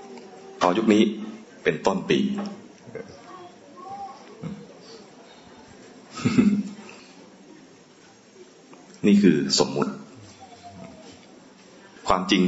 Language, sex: English, male